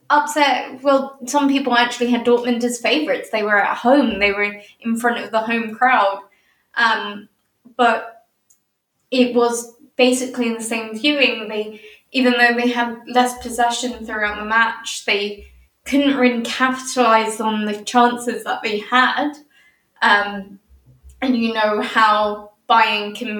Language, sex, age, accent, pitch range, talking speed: English, female, 20-39, British, 210-245 Hz, 145 wpm